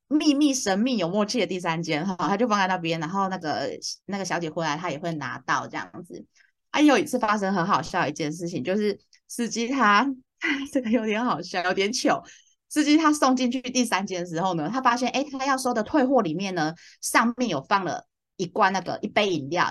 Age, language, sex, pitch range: 20-39, Chinese, female, 185-260 Hz